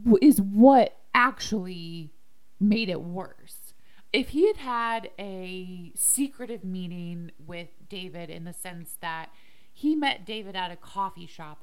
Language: English